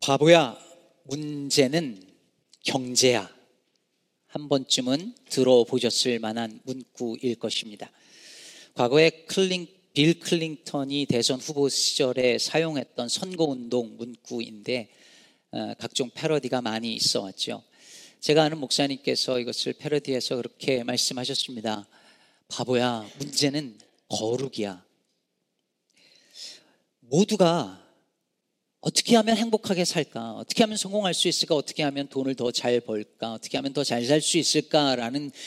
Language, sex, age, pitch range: Korean, male, 40-59, 120-165 Hz